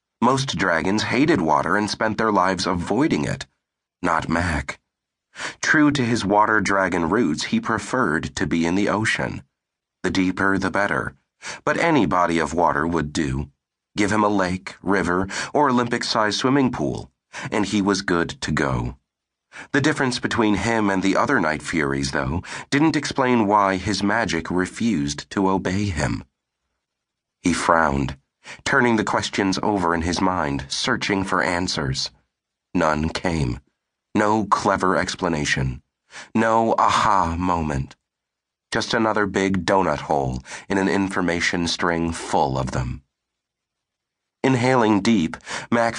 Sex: male